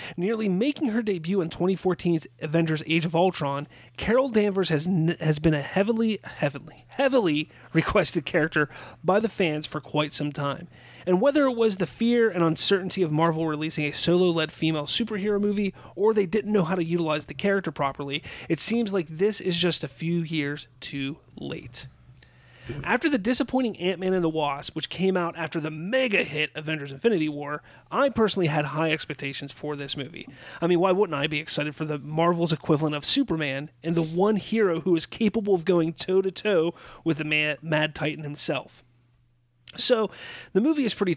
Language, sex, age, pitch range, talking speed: English, male, 30-49, 150-190 Hz, 185 wpm